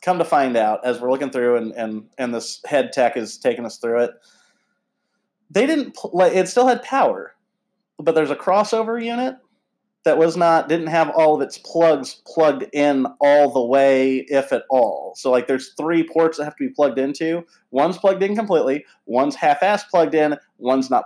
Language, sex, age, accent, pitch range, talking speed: English, male, 30-49, American, 130-185 Hz, 200 wpm